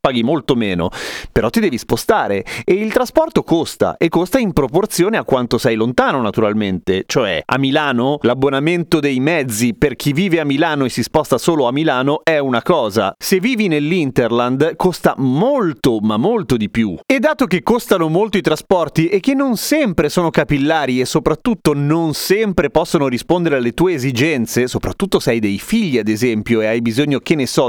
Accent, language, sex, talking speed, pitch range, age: native, Italian, male, 180 wpm, 125-175 Hz, 30-49